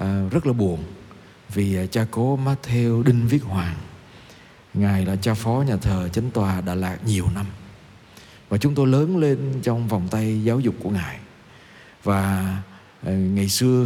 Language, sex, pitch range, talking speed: Vietnamese, male, 100-135 Hz, 160 wpm